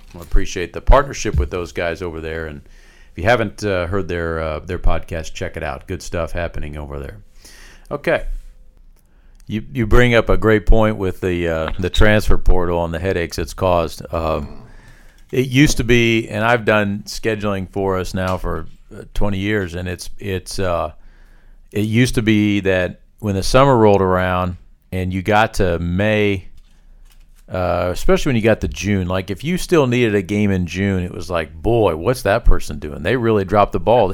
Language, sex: English, male